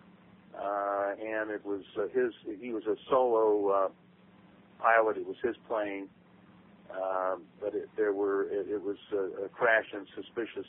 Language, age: English, 50-69